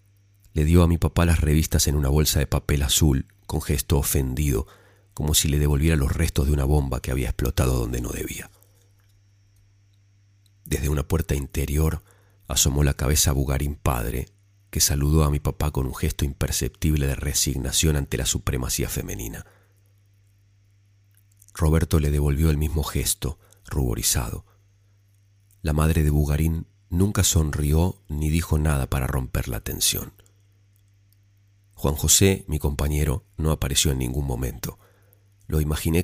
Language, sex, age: Spanish, male, 40-59